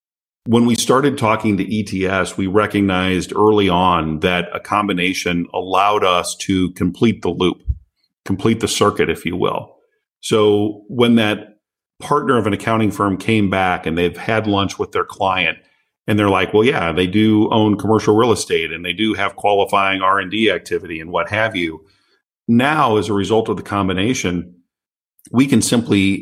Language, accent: English, American